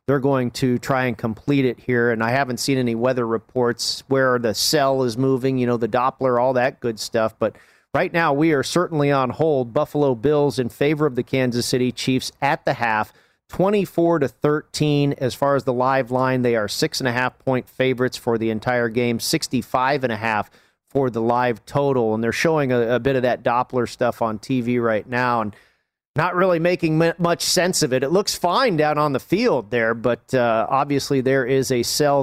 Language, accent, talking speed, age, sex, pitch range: English, American, 200 wpm, 40-59, male, 125-155 Hz